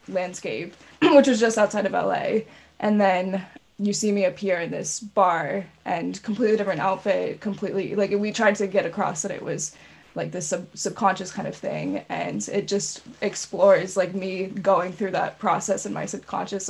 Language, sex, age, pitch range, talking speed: English, female, 20-39, 190-215 Hz, 175 wpm